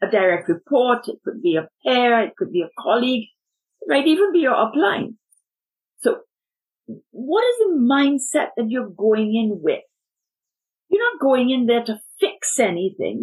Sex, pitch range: female, 215-285 Hz